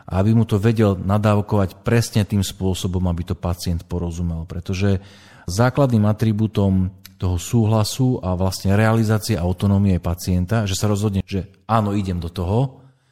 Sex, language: male, Slovak